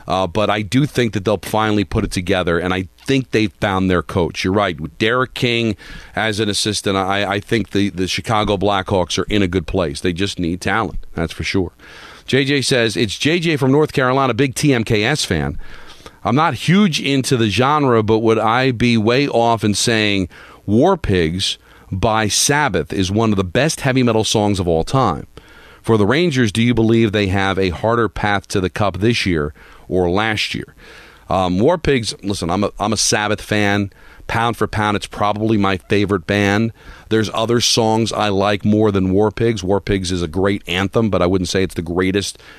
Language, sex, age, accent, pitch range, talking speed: English, male, 40-59, American, 95-115 Hz, 200 wpm